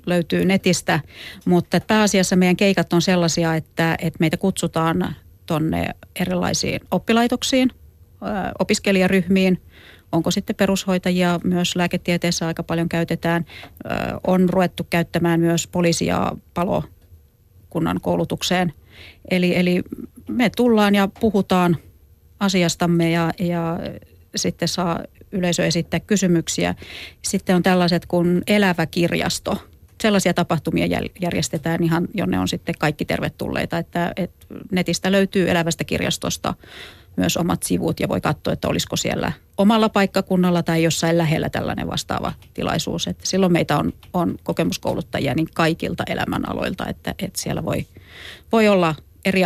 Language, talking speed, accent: Finnish, 120 wpm, native